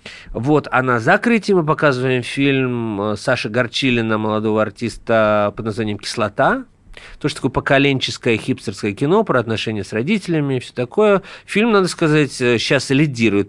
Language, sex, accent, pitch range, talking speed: Russian, male, native, 110-150 Hz, 140 wpm